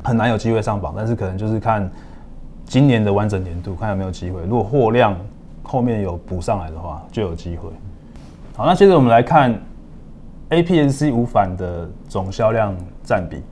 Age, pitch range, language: 20-39, 95-125 Hz, Chinese